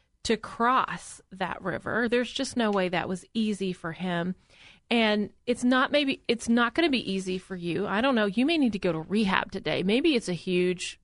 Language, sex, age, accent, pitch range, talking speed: English, female, 30-49, American, 195-245 Hz, 220 wpm